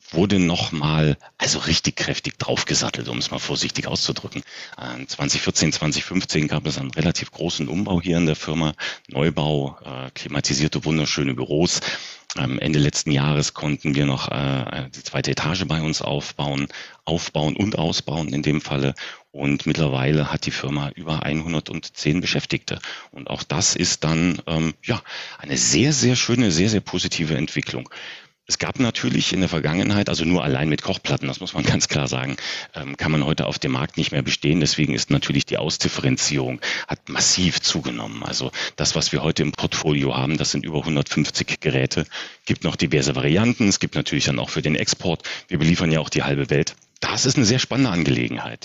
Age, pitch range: 40-59, 70-90 Hz